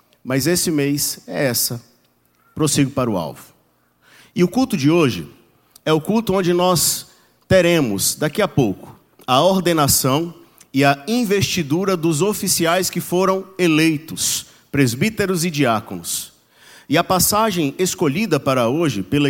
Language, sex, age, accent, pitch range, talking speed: Portuguese, male, 50-69, Brazilian, 135-180 Hz, 135 wpm